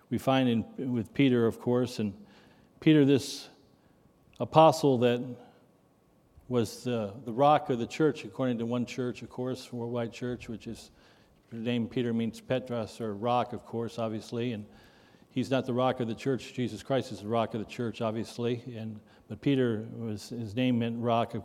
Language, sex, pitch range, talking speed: English, male, 115-135 Hz, 180 wpm